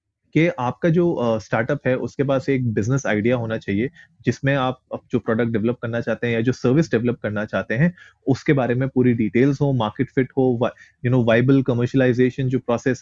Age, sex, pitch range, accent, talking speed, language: 30-49, male, 115-140 Hz, native, 200 wpm, Hindi